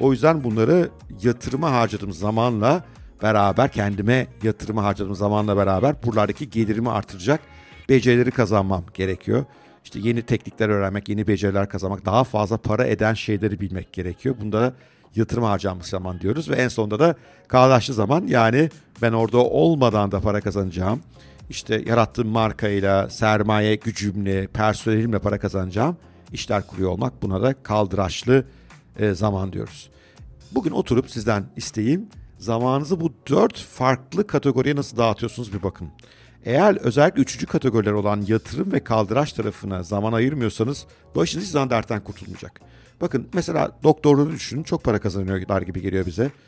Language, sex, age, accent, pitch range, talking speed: Turkish, male, 50-69, native, 100-125 Hz, 135 wpm